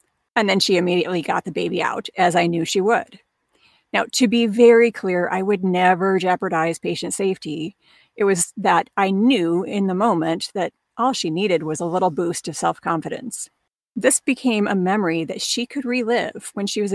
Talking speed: 190 wpm